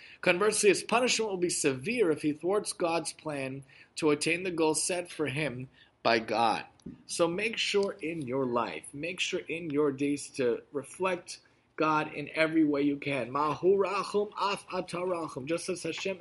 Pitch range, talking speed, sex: 150-195 Hz, 155 wpm, male